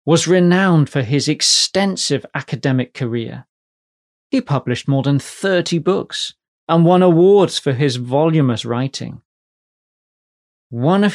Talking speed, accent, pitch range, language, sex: 120 wpm, British, 120-160 Hz, English, male